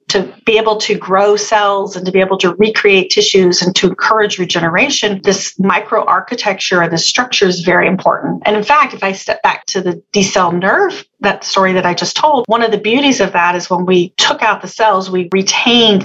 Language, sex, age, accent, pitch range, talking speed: English, female, 40-59, American, 180-220 Hz, 215 wpm